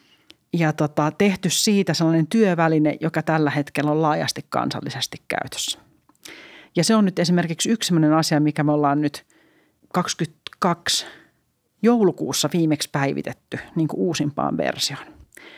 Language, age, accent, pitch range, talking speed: Finnish, 40-59, native, 150-180 Hz, 125 wpm